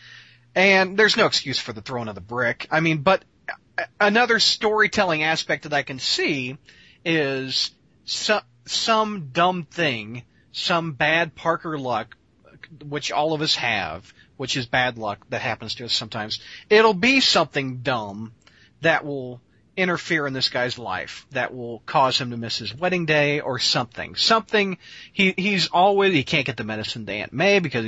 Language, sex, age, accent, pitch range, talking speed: English, male, 40-59, American, 125-180 Hz, 165 wpm